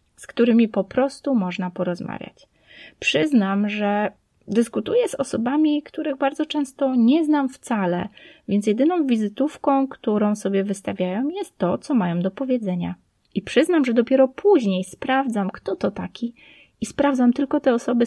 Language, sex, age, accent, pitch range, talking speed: Polish, female, 20-39, native, 195-265 Hz, 145 wpm